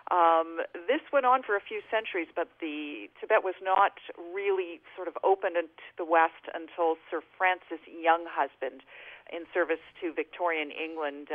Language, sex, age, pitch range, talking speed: English, female, 40-59, 160-185 Hz, 160 wpm